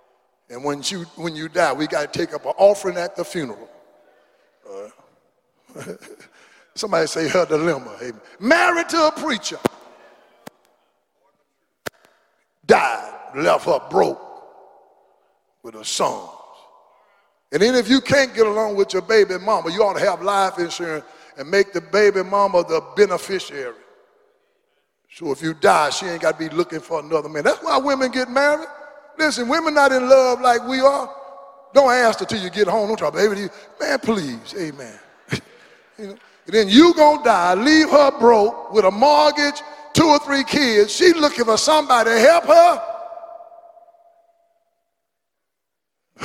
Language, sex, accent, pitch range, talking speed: English, male, American, 180-295 Hz, 155 wpm